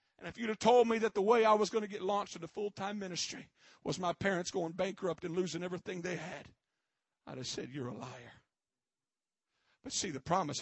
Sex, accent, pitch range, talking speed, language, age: male, American, 185-300 Hz, 215 wpm, English, 50-69